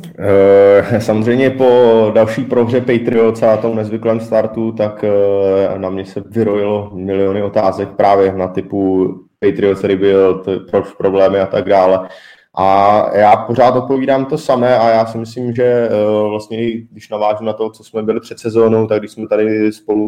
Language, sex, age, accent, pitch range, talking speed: Czech, male, 20-39, native, 105-115 Hz, 155 wpm